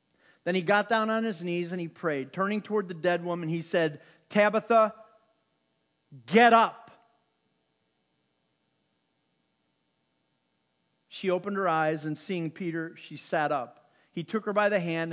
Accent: American